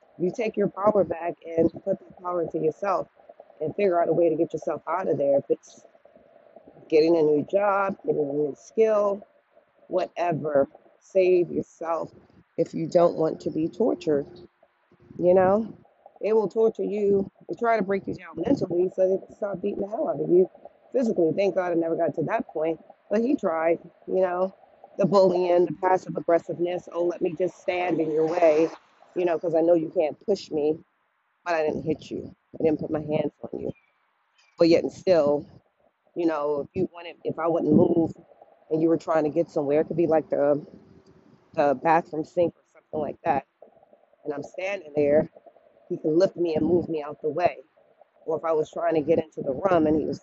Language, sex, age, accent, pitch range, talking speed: English, female, 40-59, American, 155-190 Hz, 205 wpm